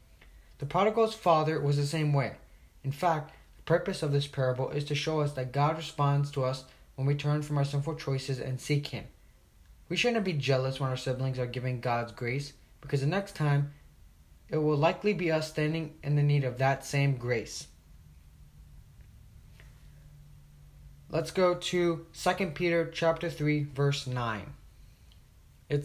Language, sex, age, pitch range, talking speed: English, male, 20-39, 125-155 Hz, 160 wpm